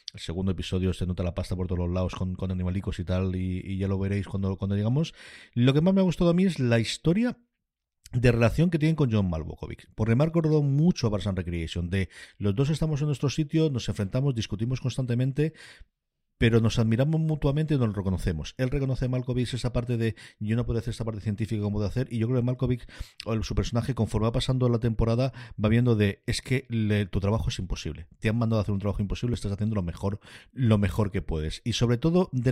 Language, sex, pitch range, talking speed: Spanish, male, 95-120 Hz, 235 wpm